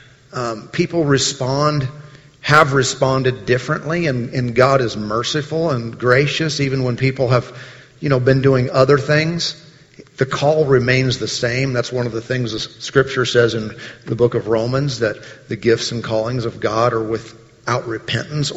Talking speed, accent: 165 wpm, American